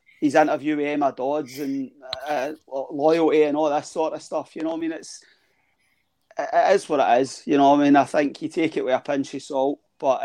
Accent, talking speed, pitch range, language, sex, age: British, 230 wpm, 145-195 Hz, English, male, 30-49